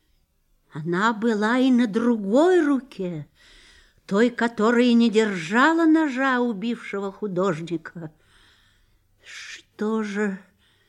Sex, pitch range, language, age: female, 175-240 Hz, Russian, 50-69